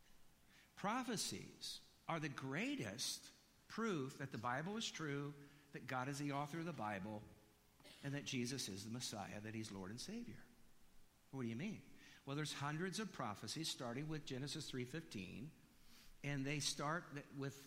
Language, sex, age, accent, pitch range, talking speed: English, male, 60-79, American, 135-155 Hz, 155 wpm